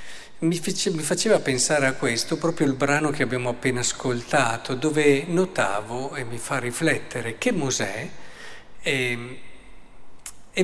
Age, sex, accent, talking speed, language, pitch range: 50-69, male, native, 125 wpm, Italian, 125-160 Hz